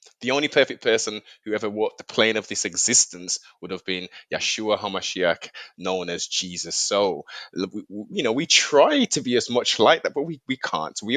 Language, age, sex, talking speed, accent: English, 20-39, male, 195 wpm, British